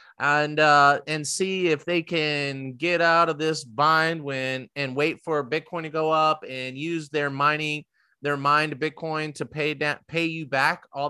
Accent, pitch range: American, 145-180 Hz